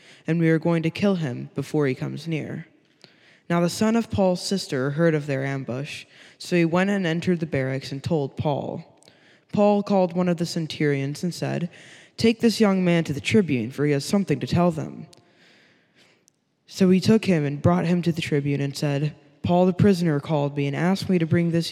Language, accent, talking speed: English, American, 210 wpm